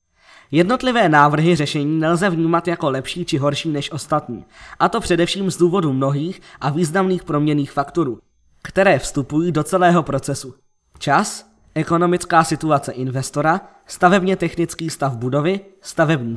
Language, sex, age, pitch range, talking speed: Czech, male, 20-39, 140-175 Hz, 130 wpm